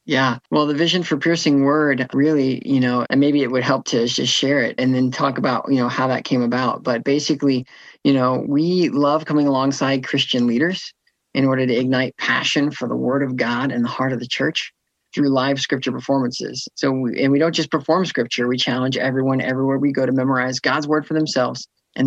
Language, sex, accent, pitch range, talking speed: English, male, American, 125-140 Hz, 220 wpm